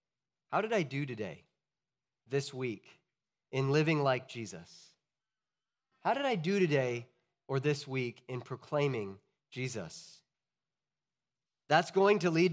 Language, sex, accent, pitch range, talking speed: English, male, American, 130-165 Hz, 125 wpm